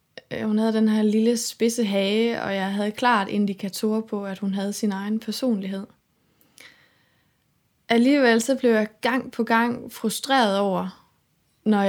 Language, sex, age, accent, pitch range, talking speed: Danish, female, 20-39, native, 195-225 Hz, 140 wpm